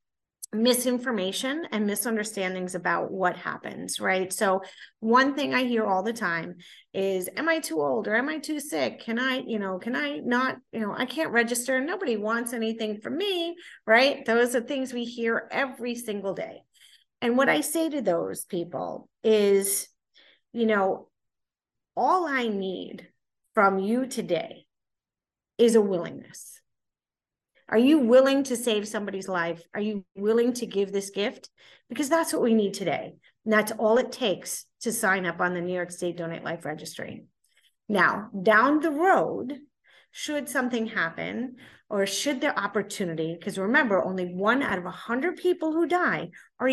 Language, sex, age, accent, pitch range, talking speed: English, female, 30-49, American, 190-260 Hz, 165 wpm